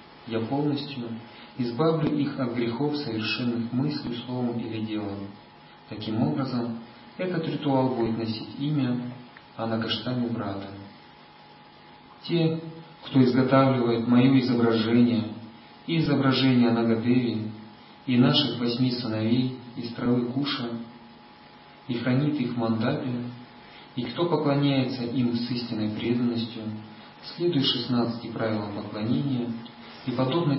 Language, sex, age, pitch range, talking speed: Russian, male, 40-59, 115-130 Hz, 105 wpm